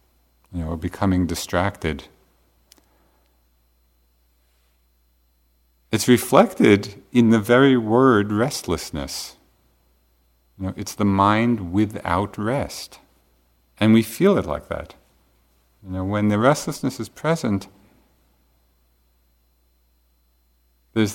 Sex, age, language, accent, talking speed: male, 50-69, English, American, 90 wpm